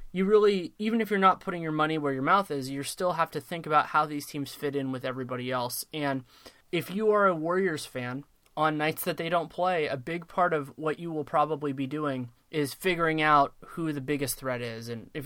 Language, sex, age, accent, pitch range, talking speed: English, male, 20-39, American, 135-165 Hz, 235 wpm